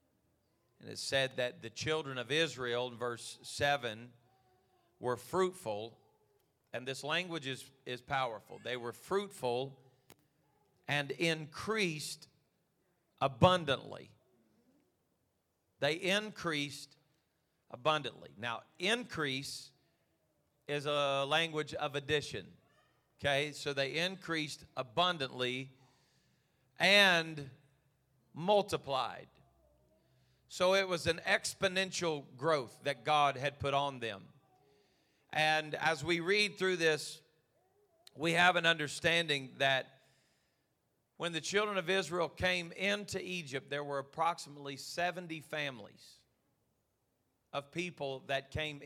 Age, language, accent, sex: 40-59, English, American, male